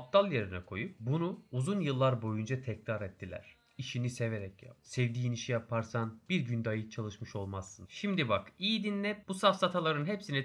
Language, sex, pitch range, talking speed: Turkish, male, 115-150 Hz, 155 wpm